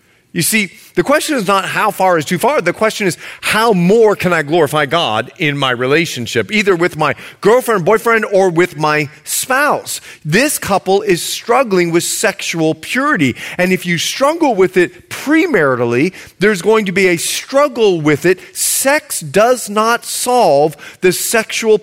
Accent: American